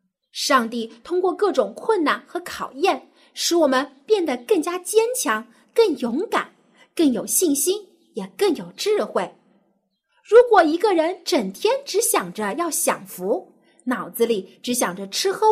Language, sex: Chinese, female